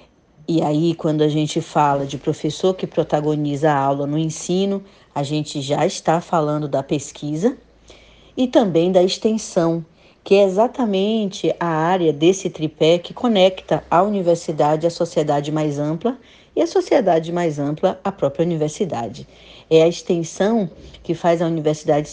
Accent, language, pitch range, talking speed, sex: Brazilian, Portuguese, 155-195 Hz, 150 wpm, female